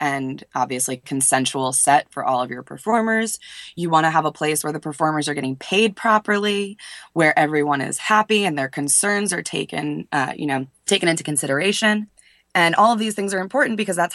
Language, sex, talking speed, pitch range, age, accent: English, female, 195 wpm, 150-195 Hz, 20-39, American